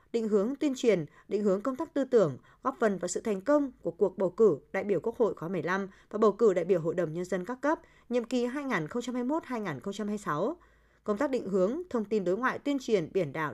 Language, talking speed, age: Vietnamese, 230 wpm, 20-39